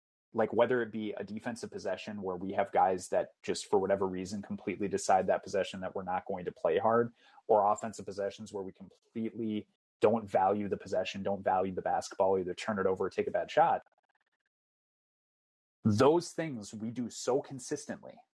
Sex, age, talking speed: male, 30-49, 185 wpm